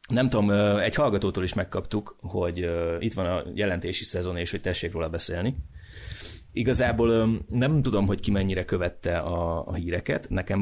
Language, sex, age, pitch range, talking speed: Hungarian, male, 30-49, 85-100 Hz, 155 wpm